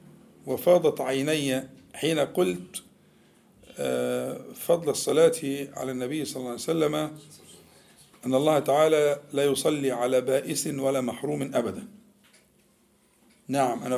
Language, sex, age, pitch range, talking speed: Arabic, male, 50-69, 135-205 Hz, 105 wpm